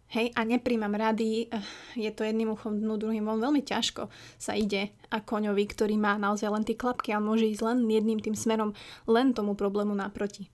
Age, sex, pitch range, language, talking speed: 20-39, female, 205-225 Hz, Slovak, 180 wpm